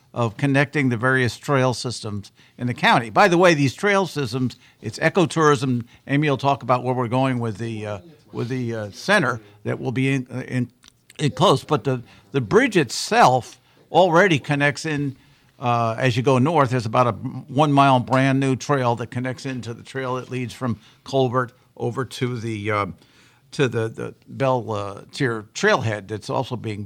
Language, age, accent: English, 60-79, American